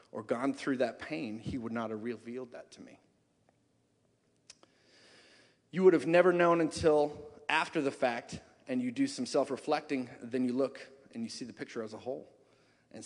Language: English